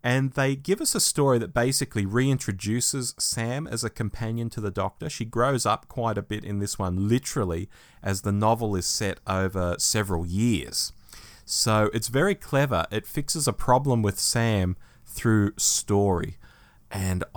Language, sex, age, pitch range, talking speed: English, male, 30-49, 100-135 Hz, 160 wpm